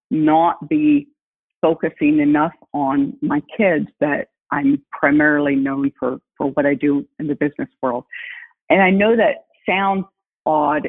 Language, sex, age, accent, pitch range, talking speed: English, female, 50-69, American, 145-225 Hz, 145 wpm